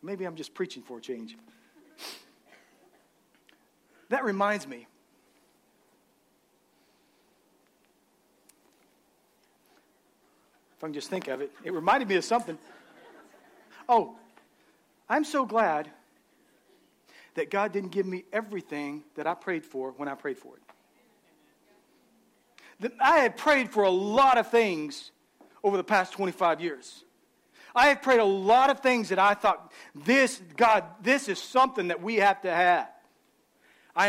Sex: male